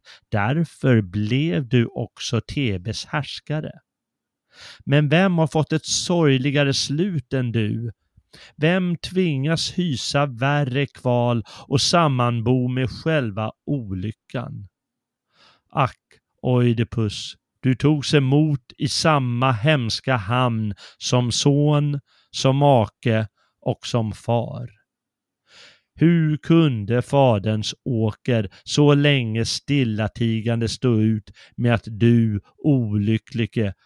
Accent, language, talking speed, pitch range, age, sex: native, Swedish, 100 wpm, 110-145 Hz, 30-49, male